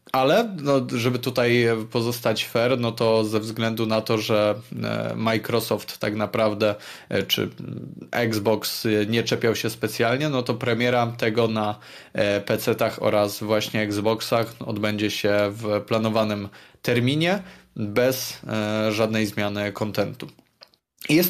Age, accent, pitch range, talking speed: 20-39, native, 110-125 Hz, 115 wpm